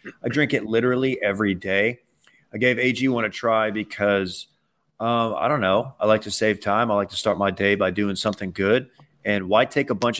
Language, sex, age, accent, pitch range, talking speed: English, male, 30-49, American, 105-125 Hz, 210 wpm